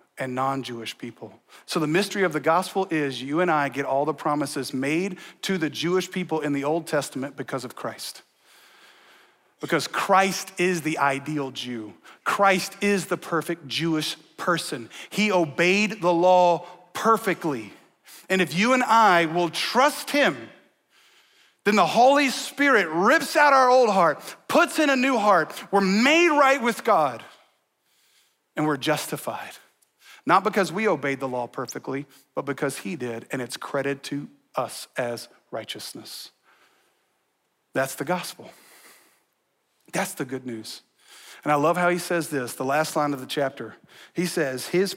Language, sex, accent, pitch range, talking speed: English, male, American, 140-195 Hz, 155 wpm